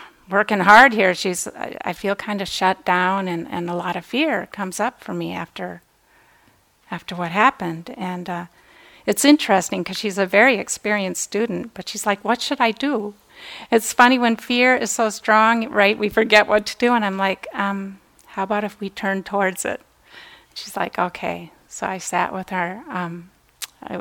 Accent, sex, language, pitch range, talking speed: American, female, English, 180-210 Hz, 185 wpm